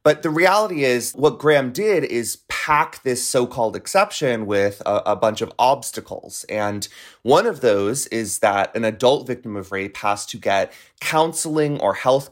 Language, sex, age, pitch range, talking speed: English, male, 30-49, 110-150 Hz, 170 wpm